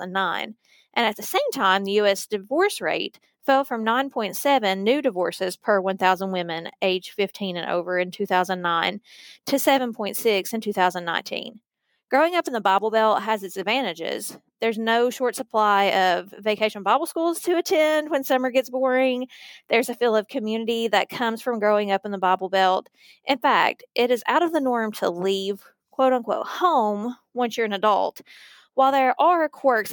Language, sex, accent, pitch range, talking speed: English, female, American, 195-255 Hz, 170 wpm